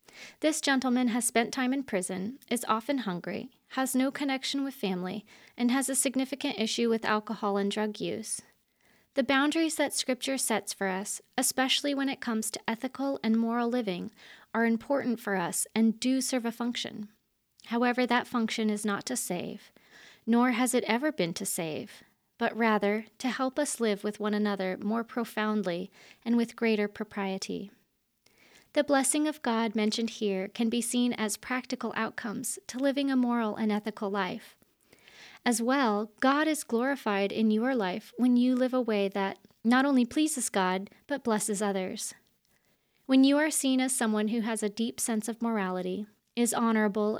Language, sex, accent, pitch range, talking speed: English, female, American, 210-255 Hz, 170 wpm